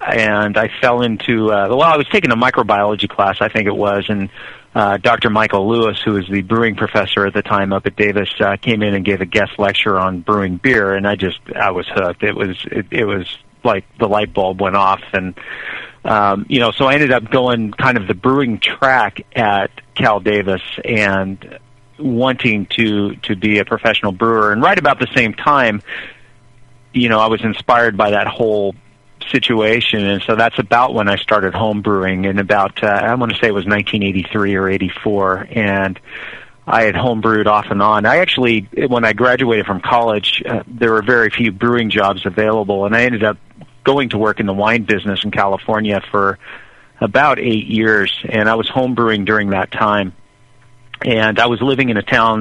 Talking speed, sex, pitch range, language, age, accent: 200 wpm, male, 100-115 Hz, English, 30-49, American